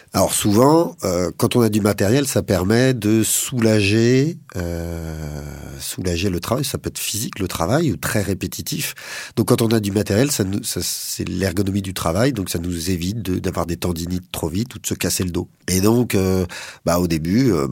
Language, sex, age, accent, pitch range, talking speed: French, male, 40-59, French, 85-110 Hz, 205 wpm